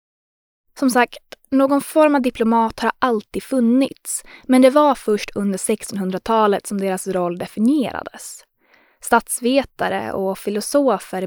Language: Swedish